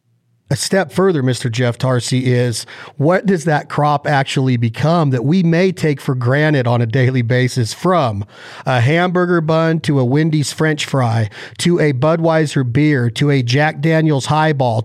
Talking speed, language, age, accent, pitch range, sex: 165 wpm, English, 40-59, American, 135-170 Hz, male